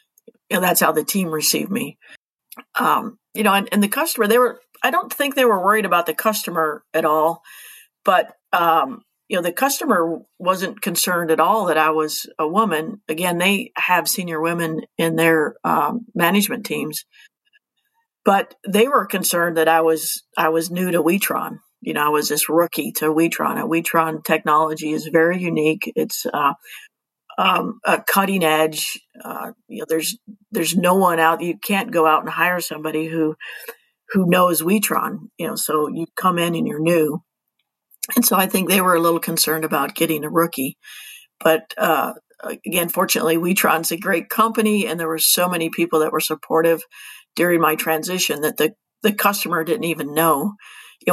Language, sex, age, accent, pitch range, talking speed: German, female, 50-69, American, 160-205 Hz, 180 wpm